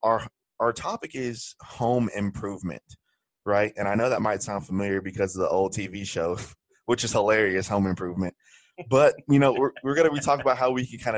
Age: 20-39